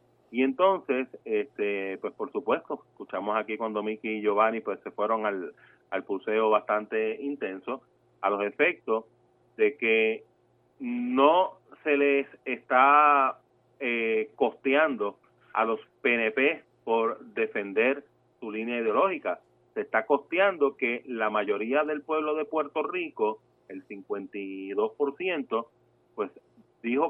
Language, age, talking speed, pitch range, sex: Spanish, 30-49, 120 wpm, 110-155 Hz, male